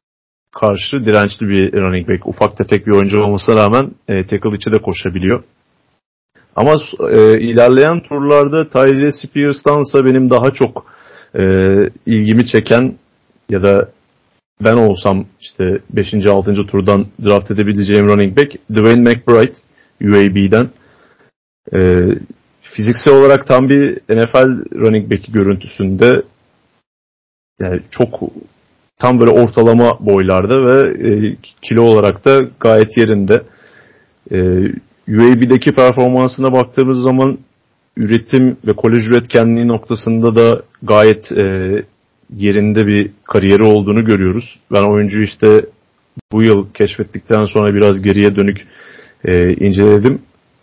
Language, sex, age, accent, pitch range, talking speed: Turkish, male, 40-59, native, 100-120 Hz, 115 wpm